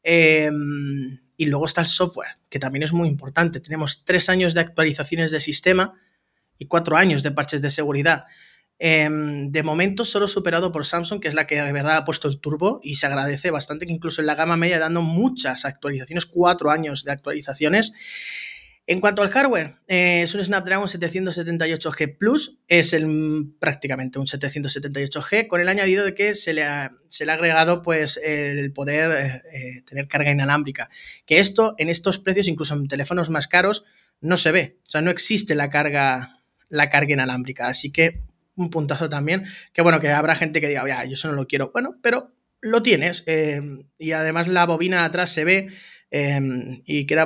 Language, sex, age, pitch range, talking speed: Spanish, male, 20-39, 145-175 Hz, 190 wpm